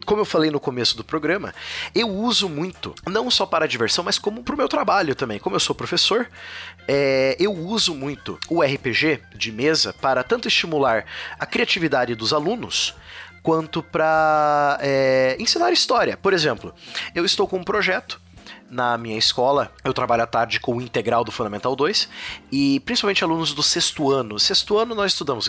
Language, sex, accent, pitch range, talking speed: Portuguese, male, Brazilian, 115-175 Hz, 180 wpm